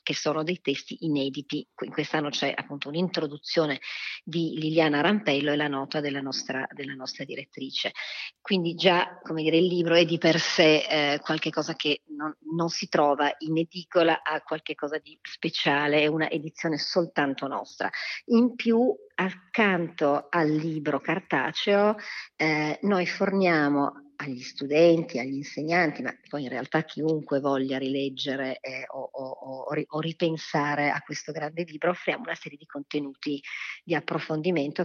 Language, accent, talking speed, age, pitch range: Italian, native, 150 wpm, 40-59, 145-175 Hz